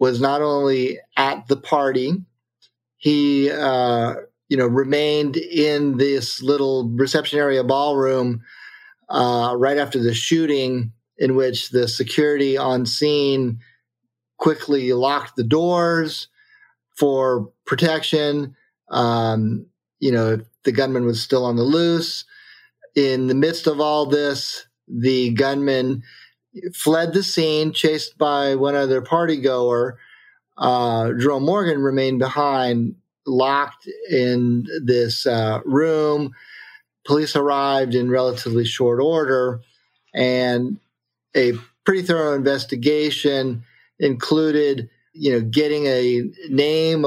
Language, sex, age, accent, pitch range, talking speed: English, male, 30-49, American, 125-150 Hz, 110 wpm